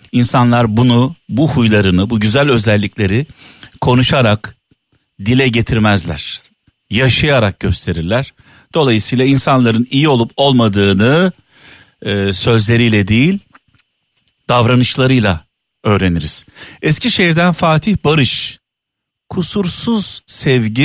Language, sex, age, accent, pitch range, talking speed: Turkish, male, 50-69, native, 105-135 Hz, 80 wpm